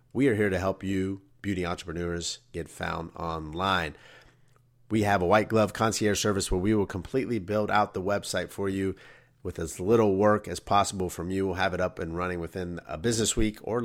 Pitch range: 90-110 Hz